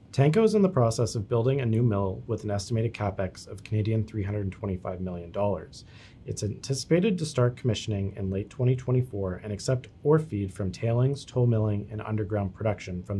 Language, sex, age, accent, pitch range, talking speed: English, male, 30-49, American, 100-125 Hz, 175 wpm